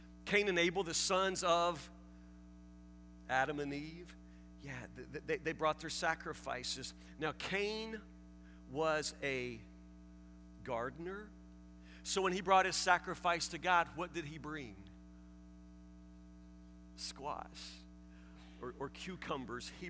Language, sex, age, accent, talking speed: English, male, 50-69, American, 115 wpm